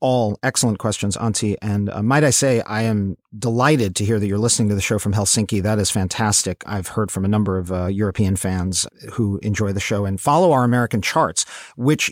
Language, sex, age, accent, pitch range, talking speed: English, male, 40-59, American, 110-140 Hz, 220 wpm